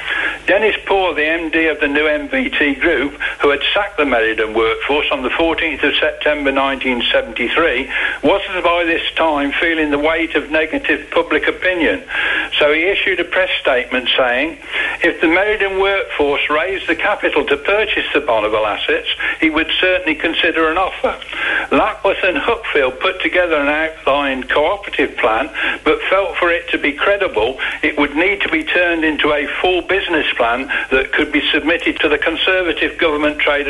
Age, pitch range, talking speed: 60-79, 150-185 Hz, 165 wpm